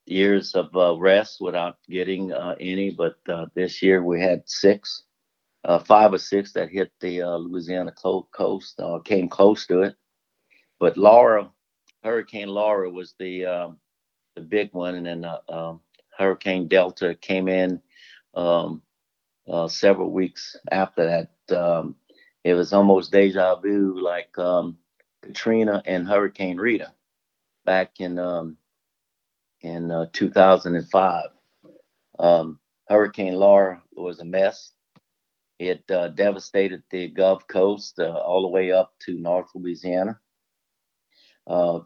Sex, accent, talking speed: male, American, 140 wpm